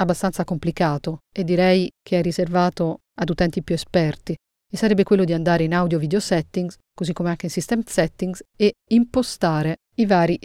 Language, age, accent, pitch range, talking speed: Italian, 30-49, native, 170-205 Hz, 165 wpm